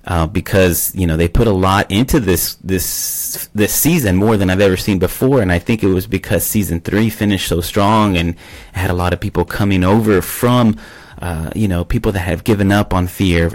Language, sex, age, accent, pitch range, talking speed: English, male, 30-49, American, 85-105 Hz, 215 wpm